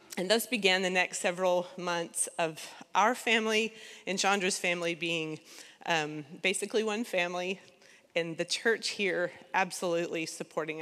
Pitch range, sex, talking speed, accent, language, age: 175-220 Hz, female, 135 wpm, American, English, 30-49